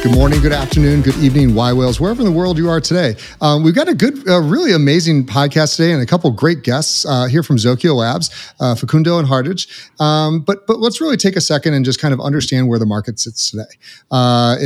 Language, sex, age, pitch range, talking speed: English, male, 30-49, 120-155 Hz, 240 wpm